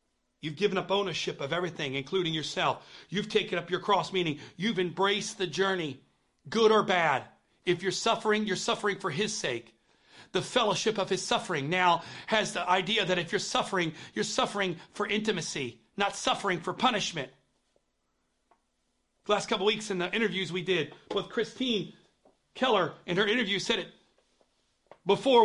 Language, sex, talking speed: English, male, 160 wpm